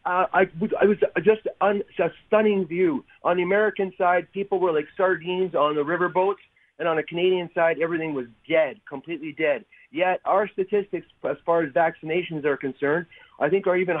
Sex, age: male, 40-59